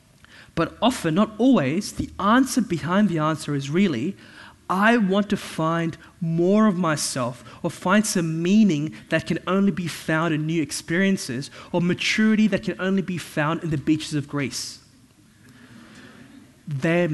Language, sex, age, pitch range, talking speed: English, male, 20-39, 145-195 Hz, 150 wpm